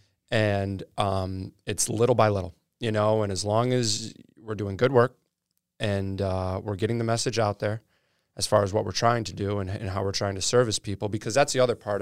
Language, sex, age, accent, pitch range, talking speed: English, male, 20-39, American, 100-115 Hz, 225 wpm